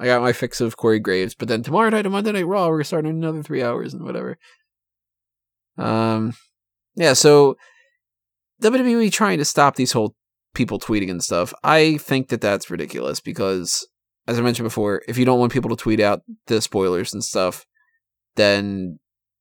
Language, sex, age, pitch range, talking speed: English, male, 20-39, 110-165 Hz, 180 wpm